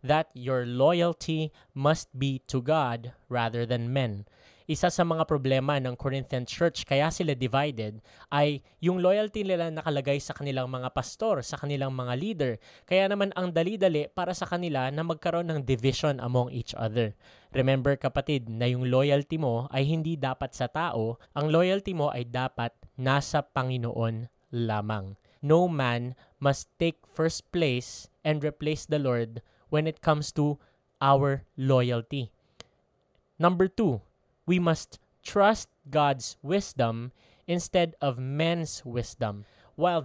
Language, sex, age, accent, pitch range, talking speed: English, male, 20-39, Filipino, 125-160 Hz, 140 wpm